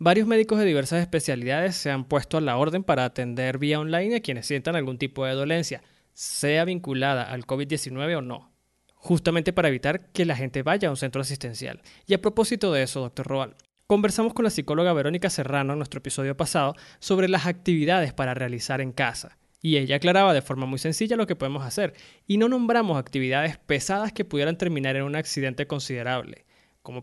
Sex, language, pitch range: male, Spanish, 135-180 Hz